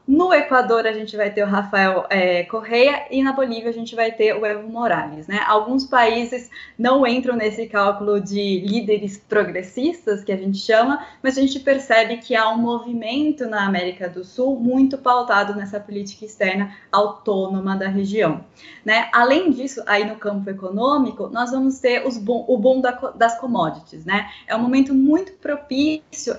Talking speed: 175 wpm